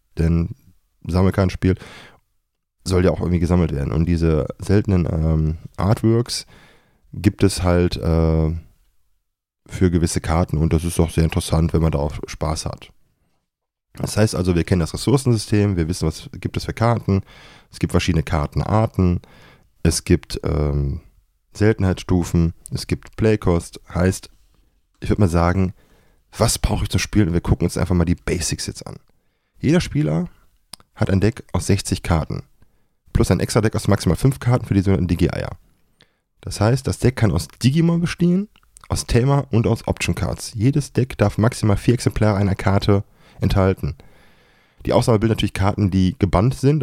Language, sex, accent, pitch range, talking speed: German, male, German, 85-105 Hz, 160 wpm